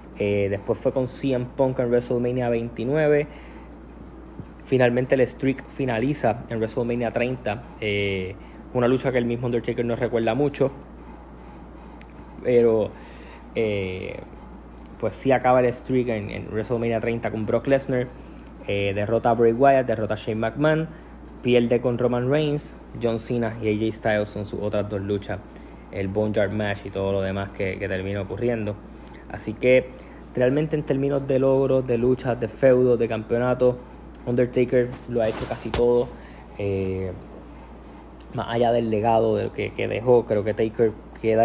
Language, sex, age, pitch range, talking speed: Spanish, male, 10-29, 105-125 Hz, 155 wpm